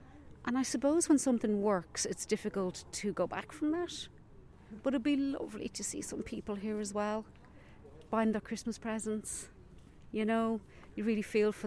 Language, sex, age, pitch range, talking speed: English, female, 40-59, 185-230 Hz, 175 wpm